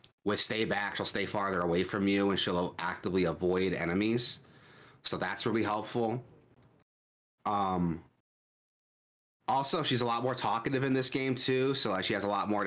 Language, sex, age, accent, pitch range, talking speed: English, male, 30-49, American, 95-115 Hz, 175 wpm